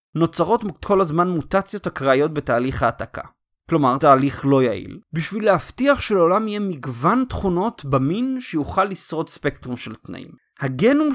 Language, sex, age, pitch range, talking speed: Hebrew, male, 30-49, 145-220 Hz, 130 wpm